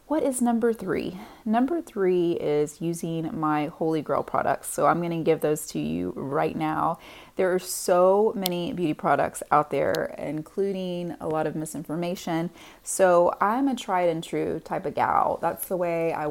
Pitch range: 155-195 Hz